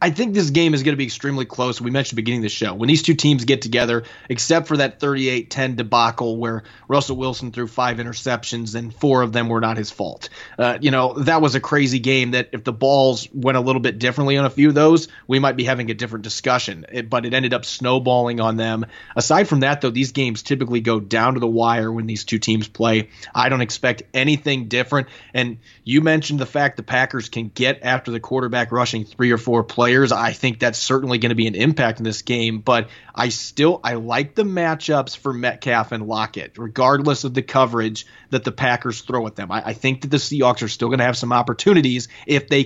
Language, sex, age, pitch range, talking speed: English, male, 30-49, 115-135 Hz, 235 wpm